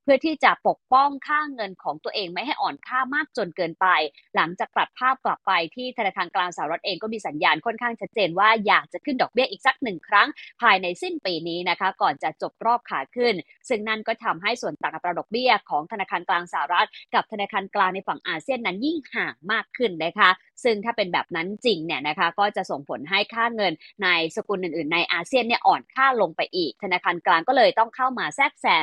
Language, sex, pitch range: Thai, female, 185-265 Hz